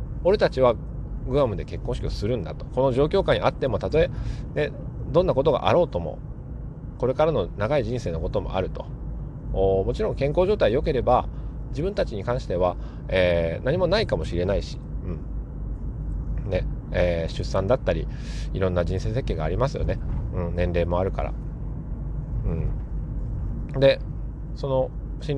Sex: male